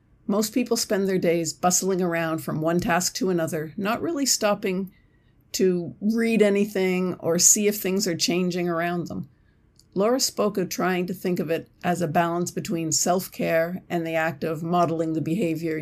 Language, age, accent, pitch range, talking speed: English, 50-69, American, 160-200 Hz, 175 wpm